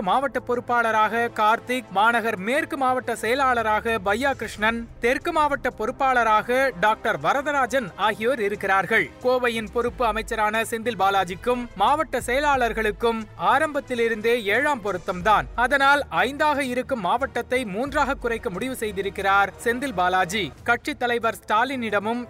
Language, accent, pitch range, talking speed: Tamil, native, 220-265 Hz, 105 wpm